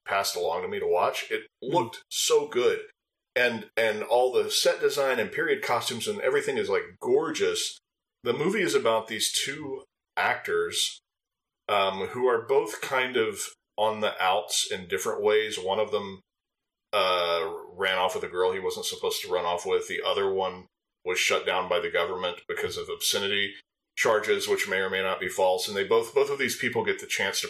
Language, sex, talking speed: English, male, 195 wpm